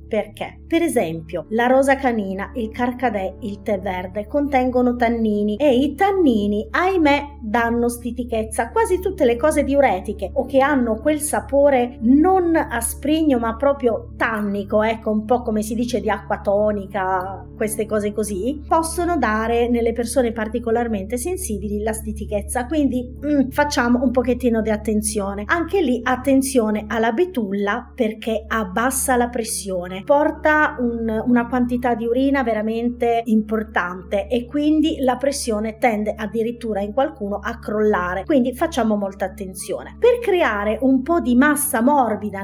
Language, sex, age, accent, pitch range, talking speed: Italian, female, 30-49, native, 215-280 Hz, 140 wpm